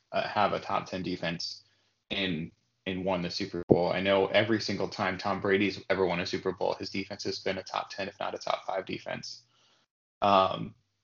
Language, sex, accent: English, male, American